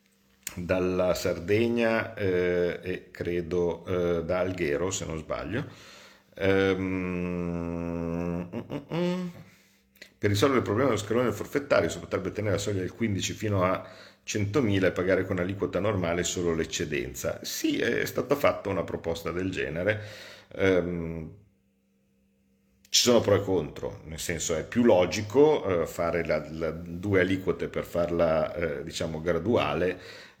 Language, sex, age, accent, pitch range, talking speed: Italian, male, 50-69, native, 75-95 Hz, 125 wpm